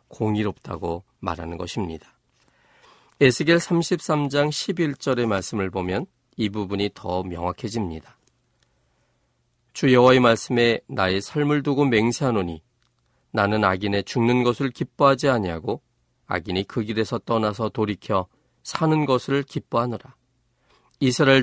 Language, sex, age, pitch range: Korean, male, 40-59, 95-140 Hz